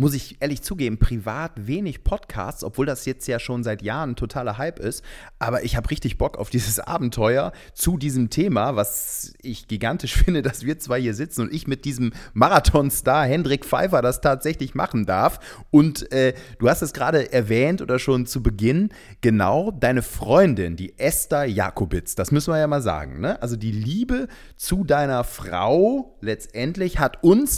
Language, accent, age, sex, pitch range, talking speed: German, German, 30-49, male, 105-135 Hz, 175 wpm